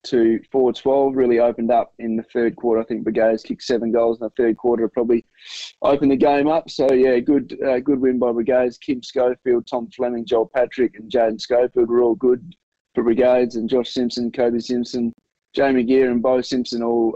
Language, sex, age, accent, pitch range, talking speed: English, male, 20-39, Australian, 115-135 Hz, 205 wpm